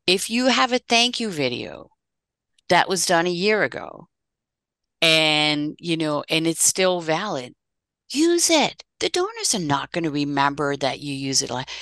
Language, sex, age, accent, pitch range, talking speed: English, female, 50-69, American, 165-230 Hz, 180 wpm